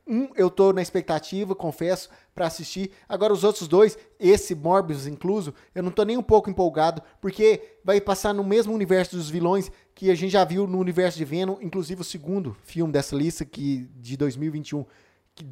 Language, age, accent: Portuguese, 20-39, Brazilian